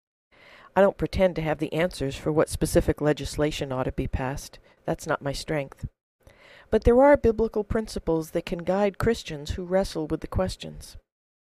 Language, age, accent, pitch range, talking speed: English, 50-69, American, 155-190 Hz, 170 wpm